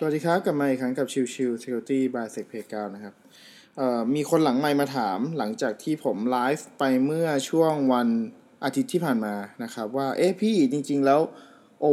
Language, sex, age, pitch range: Thai, male, 20-39, 125-155 Hz